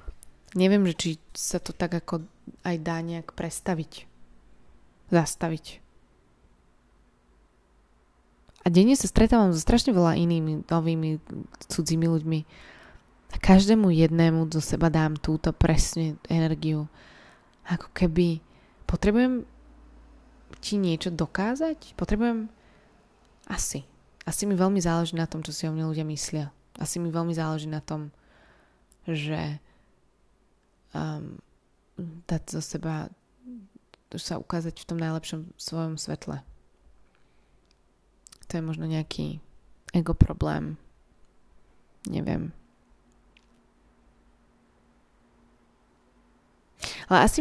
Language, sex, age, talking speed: Slovak, female, 20-39, 100 wpm